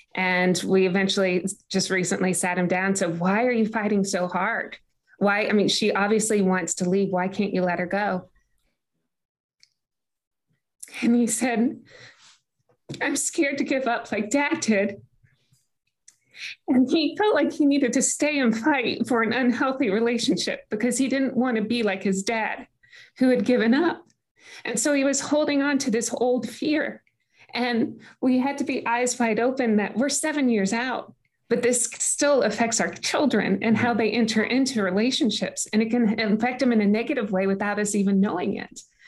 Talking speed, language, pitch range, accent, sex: 180 wpm, English, 200-255 Hz, American, female